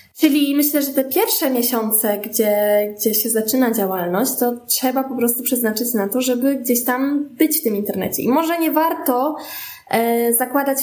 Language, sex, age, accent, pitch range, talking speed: Polish, female, 20-39, native, 230-275 Hz, 170 wpm